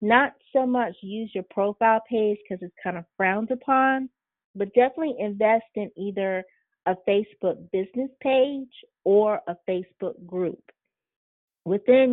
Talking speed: 135 wpm